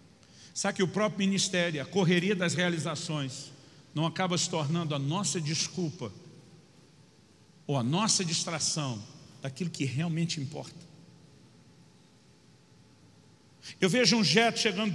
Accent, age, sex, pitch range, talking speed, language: Brazilian, 50-69, male, 170-215 Hz, 115 wpm, Portuguese